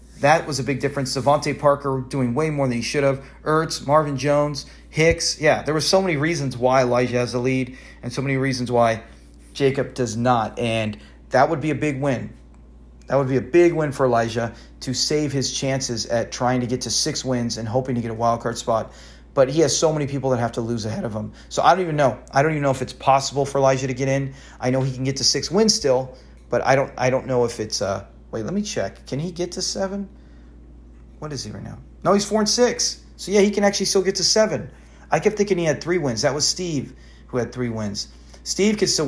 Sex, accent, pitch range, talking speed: male, American, 115-150 Hz, 255 wpm